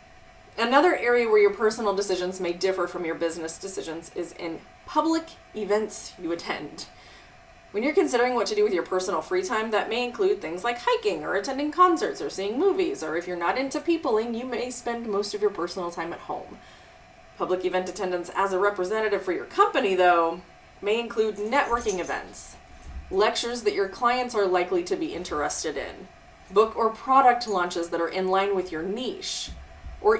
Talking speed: 185 wpm